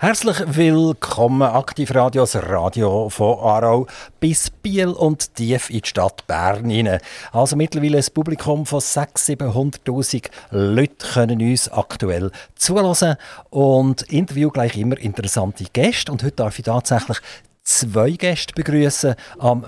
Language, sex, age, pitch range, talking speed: German, male, 50-69, 110-150 Hz, 130 wpm